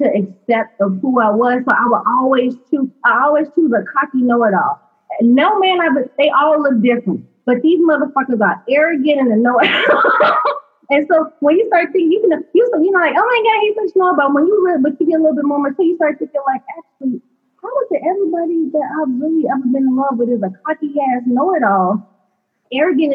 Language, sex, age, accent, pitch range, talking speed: English, female, 20-39, American, 215-295 Hz, 215 wpm